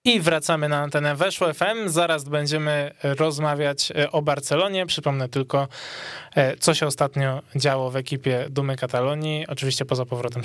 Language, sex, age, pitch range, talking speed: Polish, male, 20-39, 135-160 Hz, 140 wpm